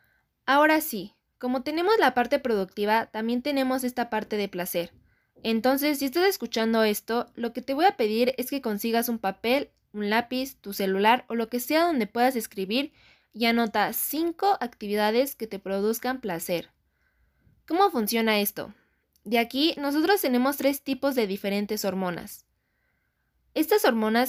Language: Spanish